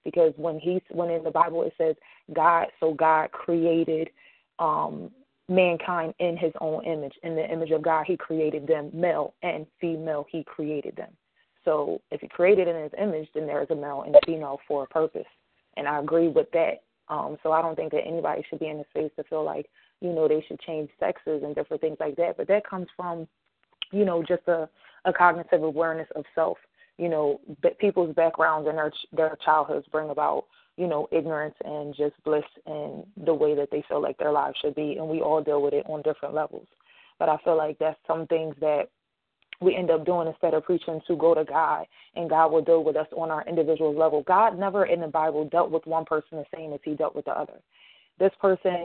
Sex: female